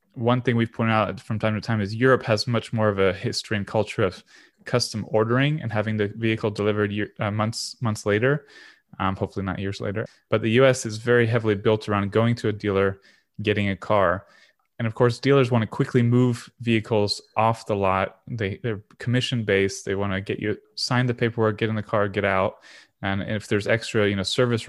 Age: 20-39